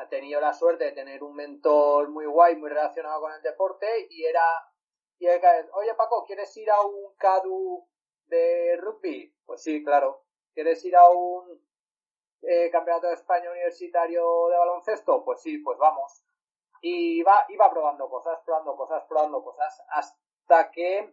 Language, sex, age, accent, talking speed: Spanish, male, 30-49, Spanish, 160 wpm